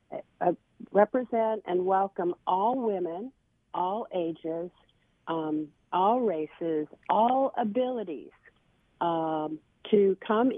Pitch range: 175-235 Hz